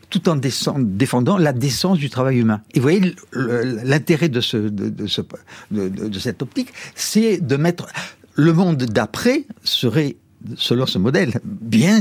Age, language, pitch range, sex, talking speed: 60-79, French, 120-170 Hz, male, 165 wpm